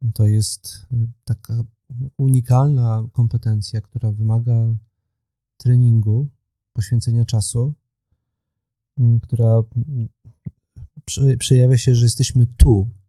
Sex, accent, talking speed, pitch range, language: male, native, 75 wpm, 110-125 Hz, Polish